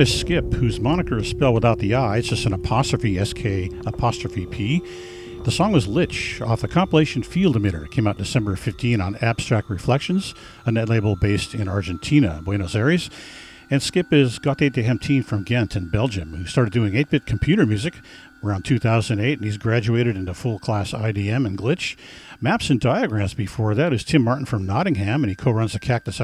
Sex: male